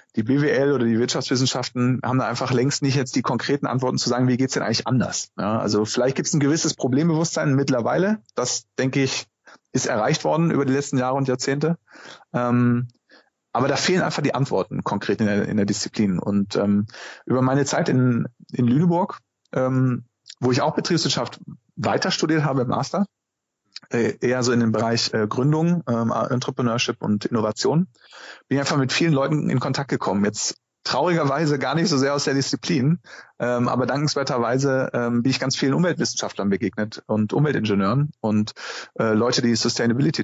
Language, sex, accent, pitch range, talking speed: German, male, German, 115-145 Hz, 175 wpm